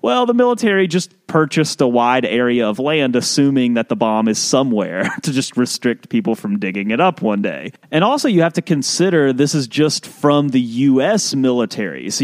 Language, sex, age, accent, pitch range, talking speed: English, male, 30-49, American, 120-170 Hz, 195 wpm